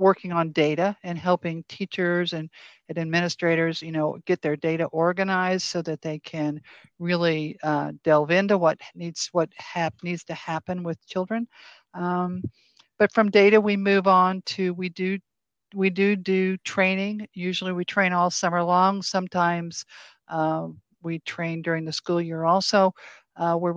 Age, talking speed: 60-79, 160 wpm